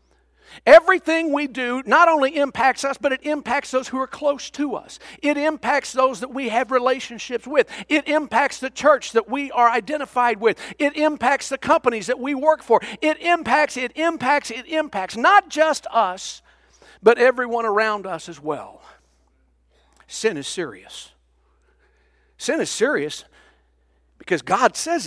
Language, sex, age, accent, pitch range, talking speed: English, male, 50-69, American, 235-300 Hz, 155 wpm